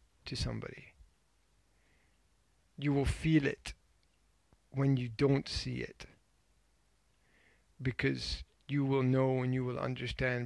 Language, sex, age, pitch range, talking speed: English, male, 50-69, 80-130 Hz, 110 wpm